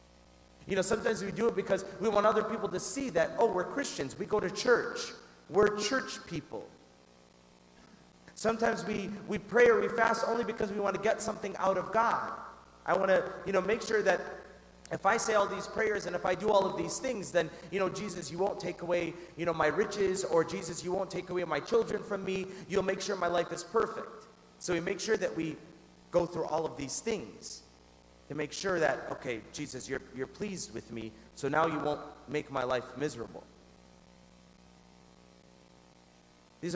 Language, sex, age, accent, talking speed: English, male, 30-49, American, 200 wpm